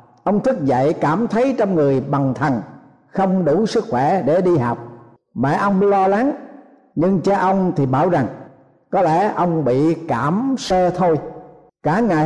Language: Thai